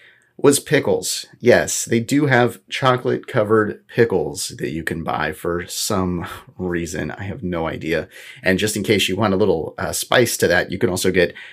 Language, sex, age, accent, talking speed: English, male, 30-49, American, 180 wpm